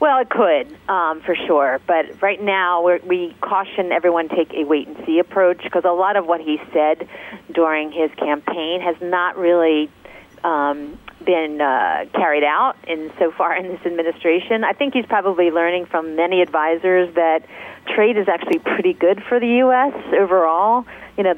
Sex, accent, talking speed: female, American, 170 wpm